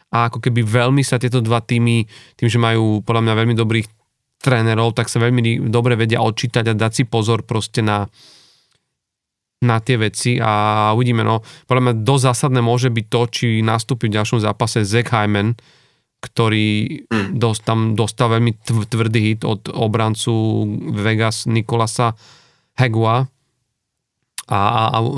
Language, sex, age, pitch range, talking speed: Slovak, male, 30-49, 110-125 Hz, 150 wpm